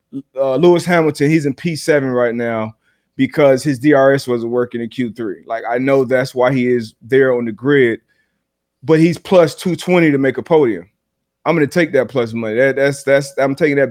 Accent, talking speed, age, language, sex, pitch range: American, 205 wpm, 30-49, English, male, 135-175 Hz